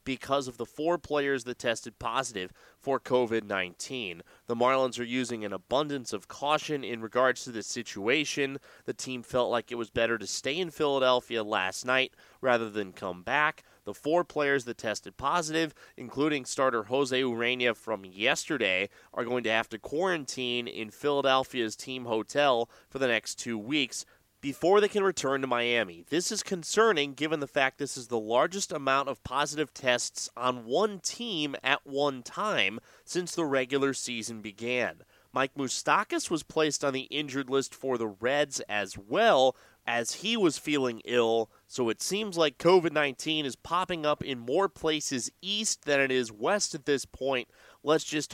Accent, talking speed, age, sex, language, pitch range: American, 170 wpm, 30-49, male, English, 120-150 Hz